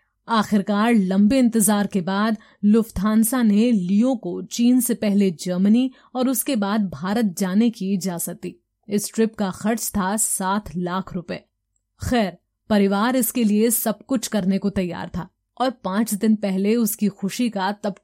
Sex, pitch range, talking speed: female, 195-225 Hz, 155 wpm